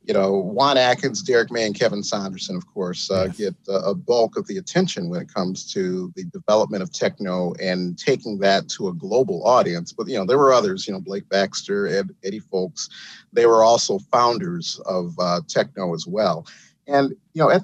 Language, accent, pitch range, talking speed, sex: English, American, 105-180 Hz, 195 wpm, male